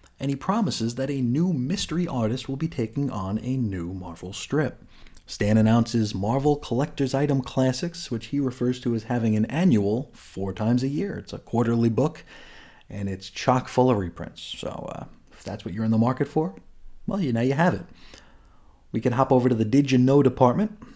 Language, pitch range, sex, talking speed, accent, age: English, 110-150 Hz, male, 200 wpm, American, 30-49